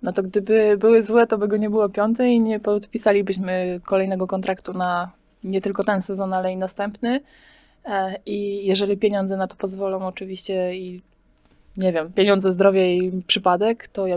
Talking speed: 170 wpm